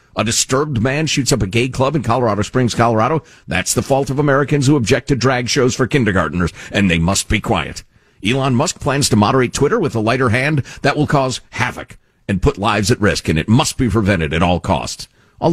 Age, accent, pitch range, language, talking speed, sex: 50-69, American, 95-140 Hz, English, 220 wpm, male